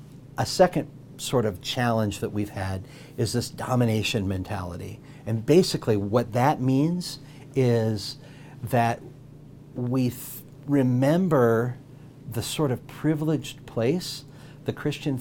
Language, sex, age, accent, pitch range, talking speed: English, male, 50-69, American, 110-140 Hz, 110 wpm